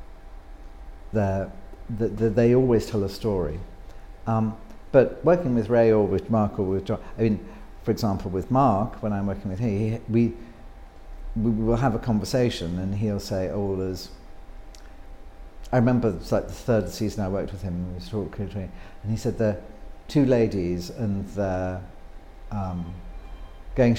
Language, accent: English, British